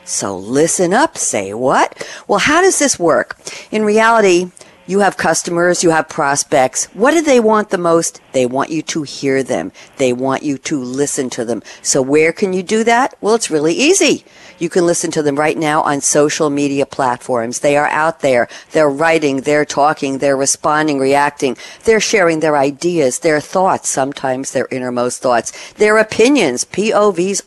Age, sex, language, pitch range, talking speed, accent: 50-69, female, English, 145-215 Hz, 180 wpm, American